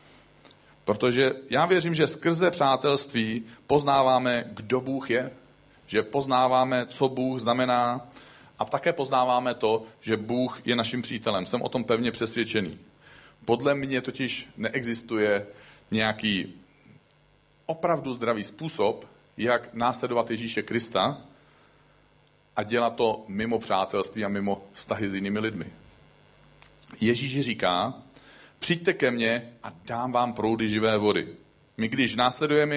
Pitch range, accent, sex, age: 110-135 Hz, native, male, 40-59